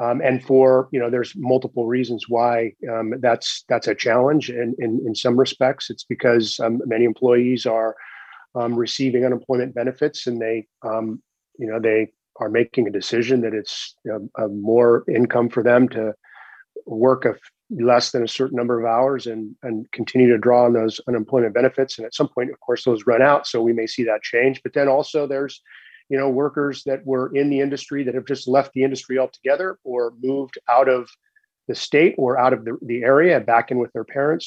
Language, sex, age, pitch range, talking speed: English, male, 40-59, 120-135 Hz, 205 wpm